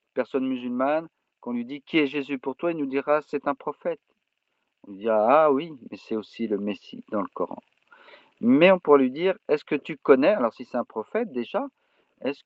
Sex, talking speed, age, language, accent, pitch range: male, 215 wpm, 50-69, French, French, 115-190 Hz